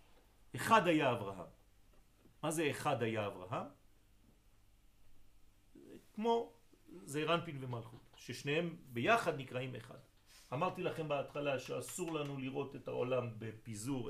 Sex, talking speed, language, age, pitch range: male, 105 wpm, French, 40-59, 100-140 Hz